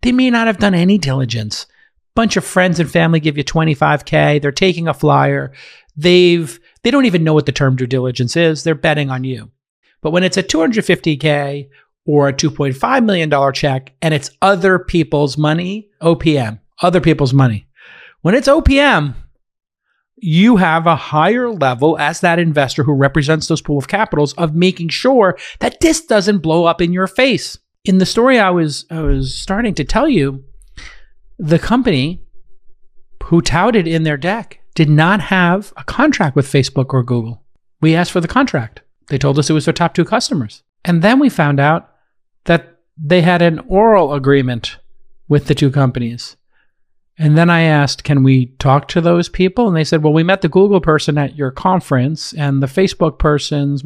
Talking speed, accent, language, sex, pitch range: 180 wpm, American, English, male, 145-185 Hz